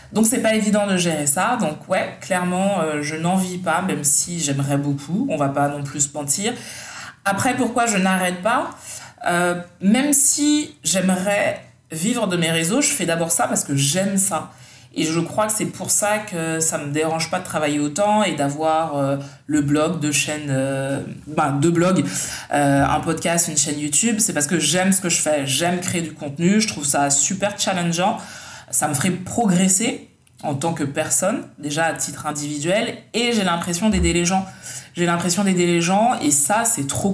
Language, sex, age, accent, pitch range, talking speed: French, female, 20-39, French, 150-200 Hz, 200 wpm